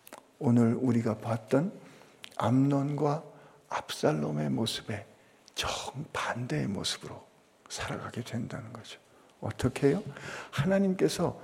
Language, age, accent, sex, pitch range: Korean, 50-69, native, male, 120-165 Hz